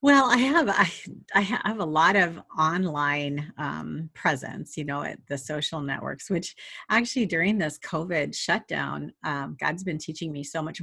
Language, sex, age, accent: English, female, 40-59, American